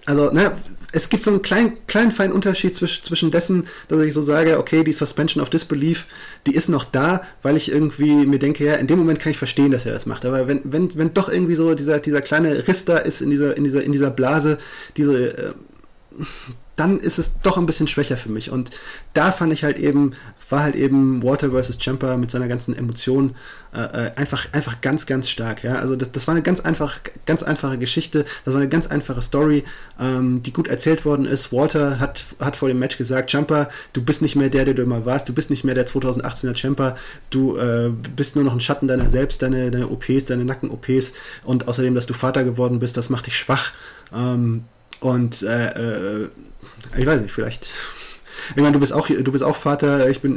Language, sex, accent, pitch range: German, male, German, 125-150 Hz